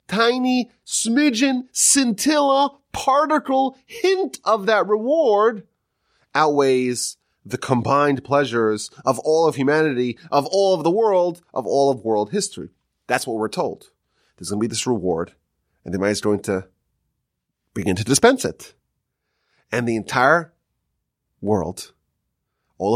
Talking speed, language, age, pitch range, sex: 135 wpm, English, 30-49, 130-215 Hz, male